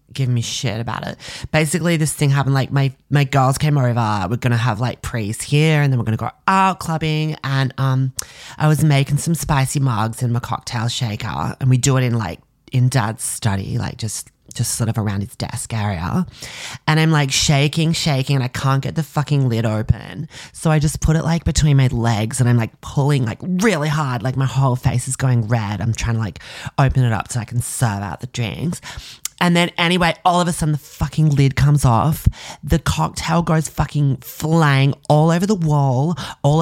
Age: 20-39